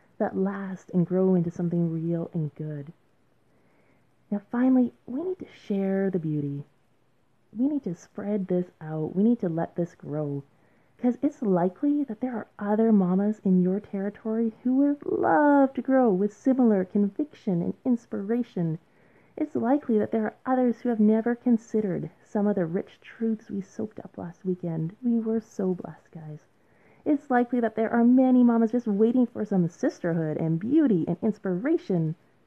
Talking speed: 170 wpm